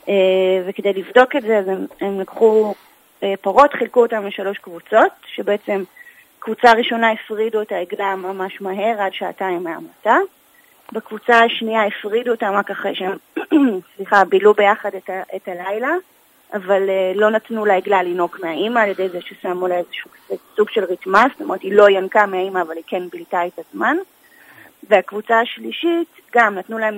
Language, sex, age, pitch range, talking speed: Hebrew, female, 30-49, 195-240 Hz, 160 wpm